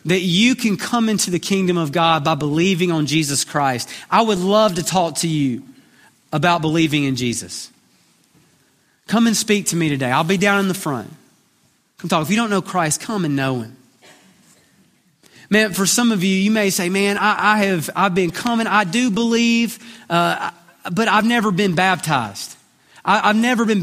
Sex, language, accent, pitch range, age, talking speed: male, English, American, 165-220 Hz, 30-49, 195 wpm